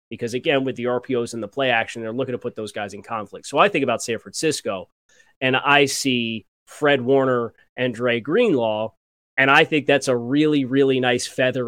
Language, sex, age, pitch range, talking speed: English, male, 30-49, 115-140 Hz, 205 wpm